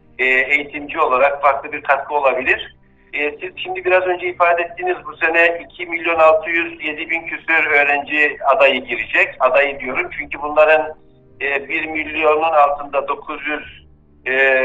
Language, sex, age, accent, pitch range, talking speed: Turkish, male, 60-79, native, 130-155 Hz, 125 wpm